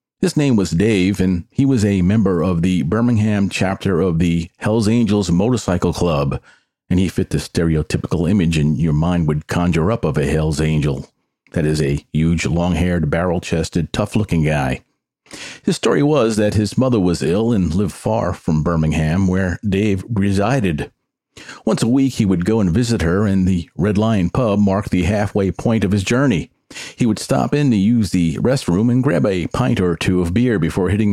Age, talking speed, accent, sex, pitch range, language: 50-69, 190 wpm, American, male, 85-110 Hz, English